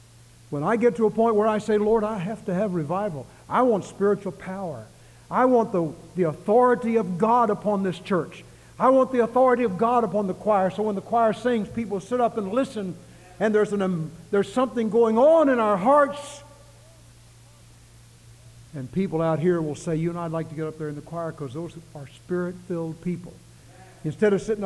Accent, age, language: American, 60-79, English